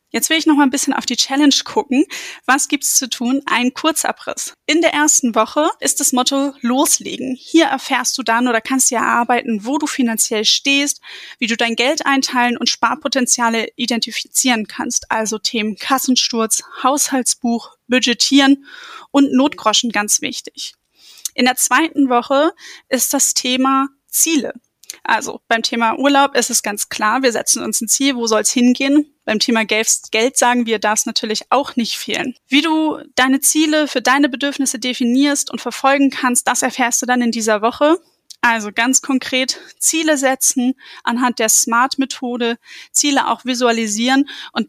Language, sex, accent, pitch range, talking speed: German, female, German, 235-280 Hz, 165 wpm